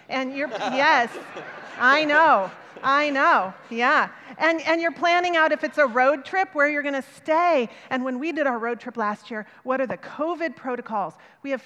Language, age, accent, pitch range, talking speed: English, 40-59, American, 220-290 Hz, 200 wpm